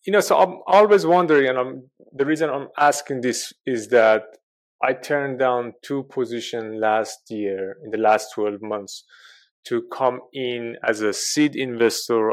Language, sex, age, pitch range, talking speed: English, male, 30-49, 115-155 Hz, 165 wpm